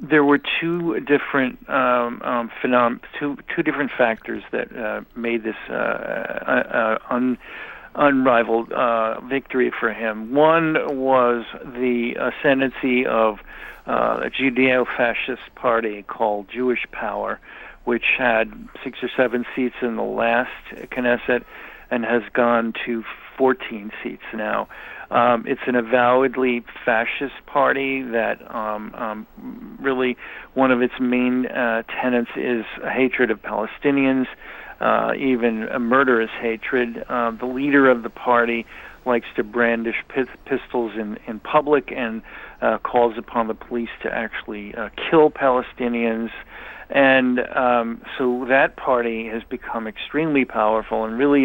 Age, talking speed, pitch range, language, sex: 50-69, 135 wpm, 115-130 Hz, English, male